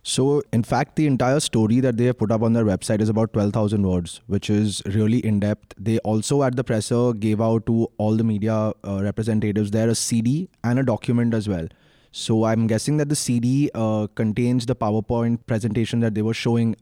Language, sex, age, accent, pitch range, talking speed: English, male, 20-39, Indian, 110-130 Hz, 205 wpm